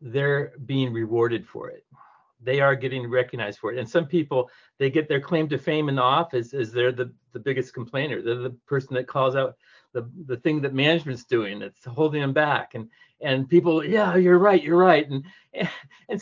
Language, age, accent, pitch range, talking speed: English, 50-69, American, 125-160 Hz, 205 wpm